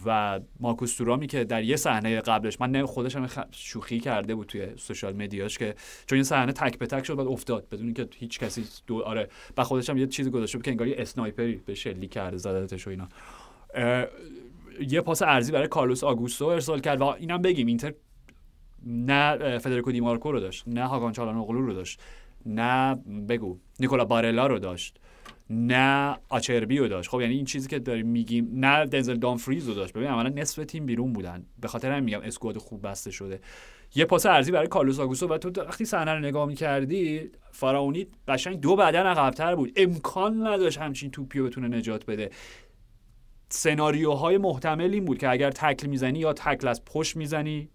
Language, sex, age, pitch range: Persian, male, 30-49, 115-140 Hz